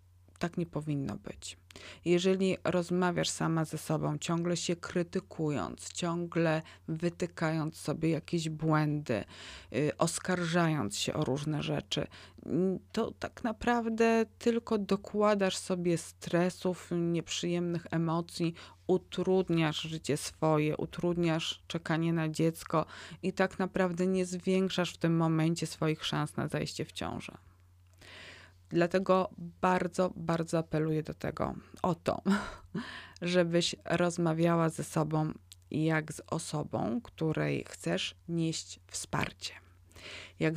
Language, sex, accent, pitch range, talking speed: Polish, female, native, 150-175 Hz, 105 wpm